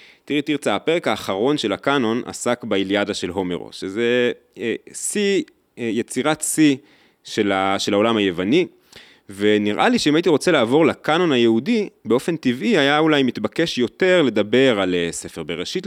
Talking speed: 150 wpm